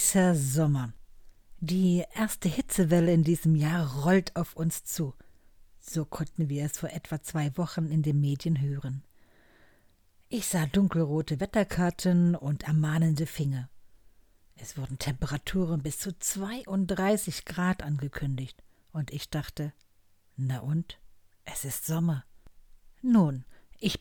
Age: 60-79